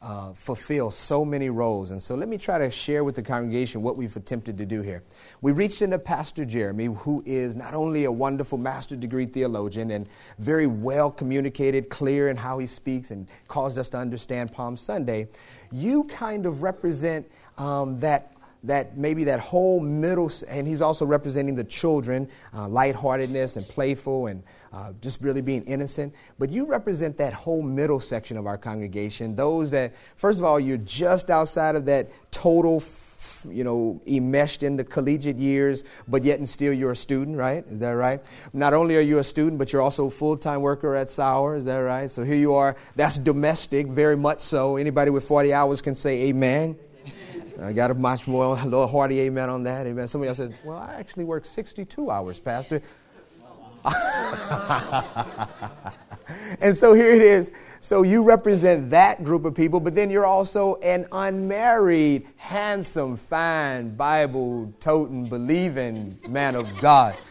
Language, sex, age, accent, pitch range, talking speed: English, male, 30-49, American, 125-155 Hz, 175 wpm